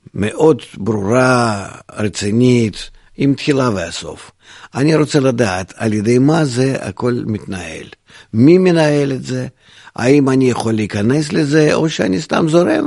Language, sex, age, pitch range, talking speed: Hebrew, male, 50-69, 105-140 Hz, 130 wpm